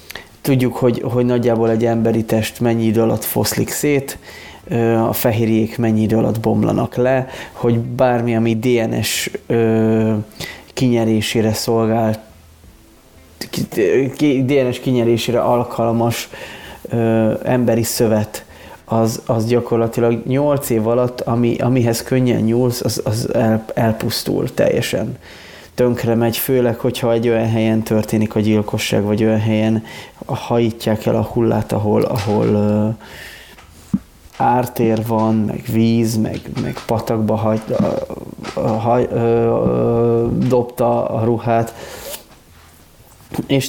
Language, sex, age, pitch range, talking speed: Hungarian, male, 30-49, 110-125 Hz, 100 wpm